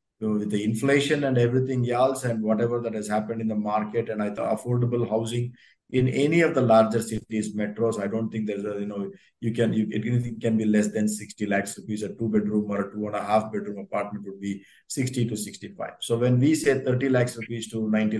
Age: 50-69